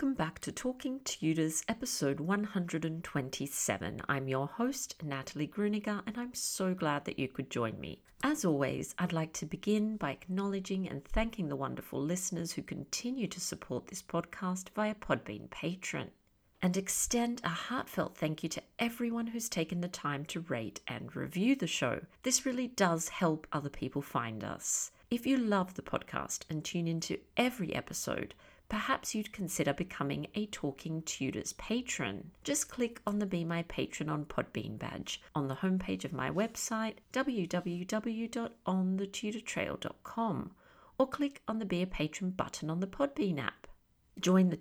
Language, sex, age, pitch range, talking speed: English, female, 50-69, 160-230 Hz, 160 wpm